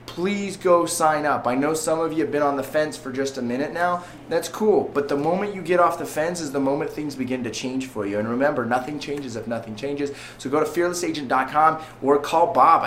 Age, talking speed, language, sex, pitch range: 20-39, 245 wpm, English, male, 125-155 Hz